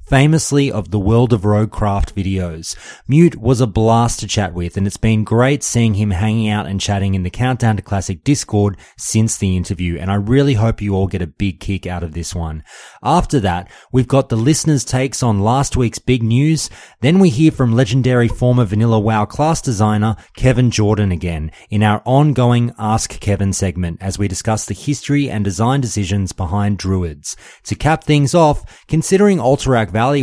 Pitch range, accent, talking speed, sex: 100-130 Hz, Australian, 190 wpm, male